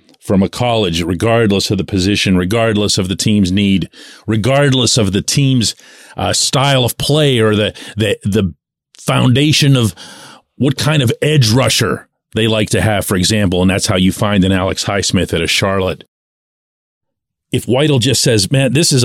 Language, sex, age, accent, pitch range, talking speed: English, male, 40-59, American, 105-145 Hz, 175 wpm